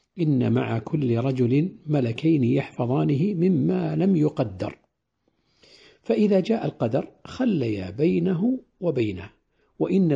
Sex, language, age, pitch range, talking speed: male, Arabic, 60-79, 115-155 Hz, 95 wpm